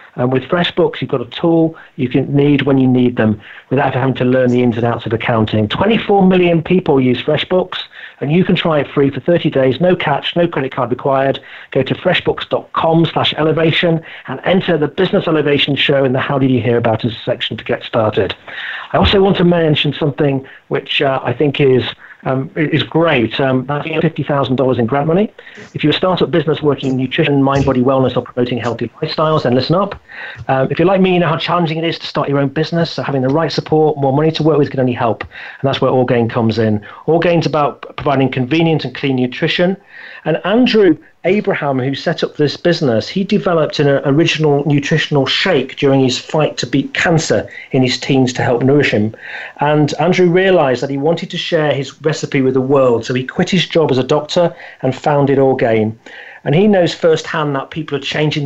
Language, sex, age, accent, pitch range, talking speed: English, male, 40-59, British, 130-165 Hz, 210 wpm